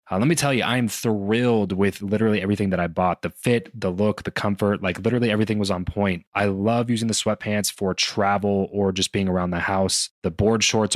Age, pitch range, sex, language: 20-39, 95-115 Hz, male, English